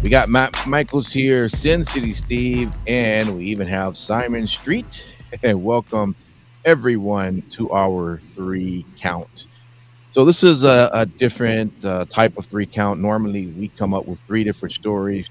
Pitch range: 95-120 Hz